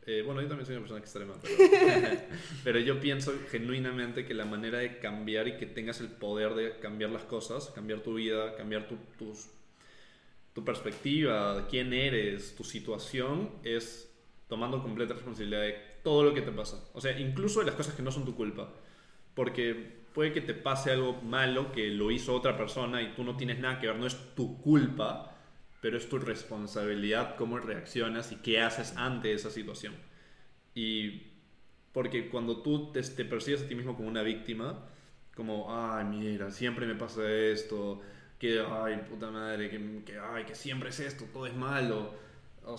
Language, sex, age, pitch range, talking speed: Spanish, male, 20-39, 110-130 Hz, 180 wpm